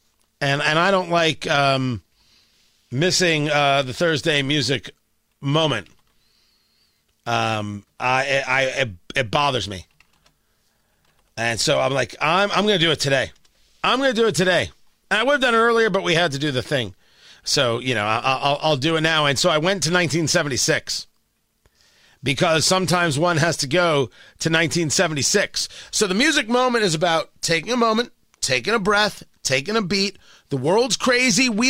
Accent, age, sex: American, 40-59, male